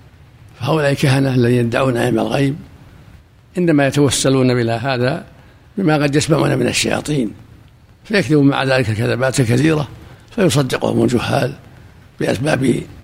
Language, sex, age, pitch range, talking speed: Arabic, male, 60-79, 115-150 Hz, 105 wpm